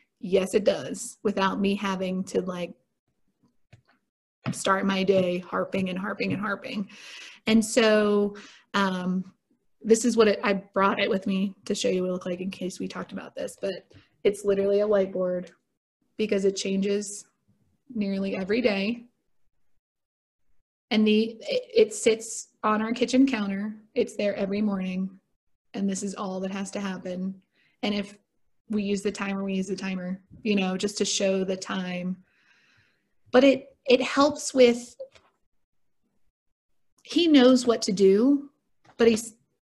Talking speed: 155 wpm